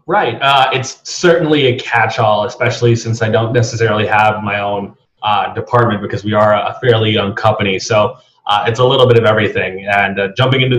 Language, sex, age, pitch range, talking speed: English, male, 30-49, 105-130 Hz, 195 wpm